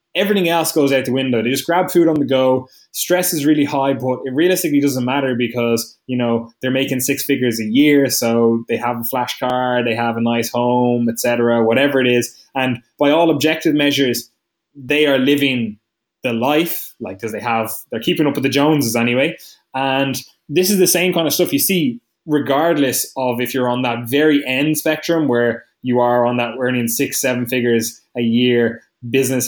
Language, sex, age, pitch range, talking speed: English, male, 20-39, 120-150 Hz, 200 wpm